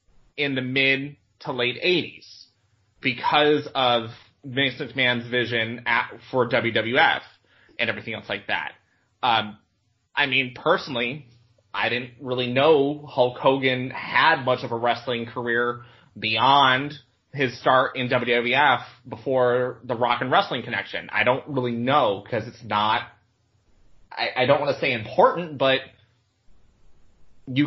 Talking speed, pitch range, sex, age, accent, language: 135 wpm, 115-135 Hz, male, 30-49, American, English